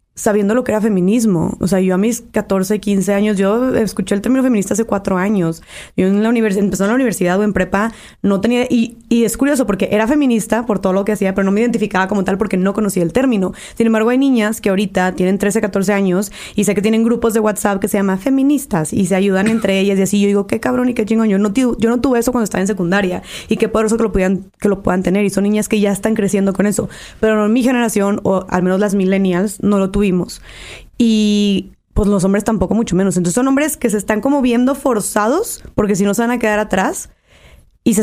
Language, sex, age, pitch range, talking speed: English, female, 20-39, 195-230 Hz, 255 wpm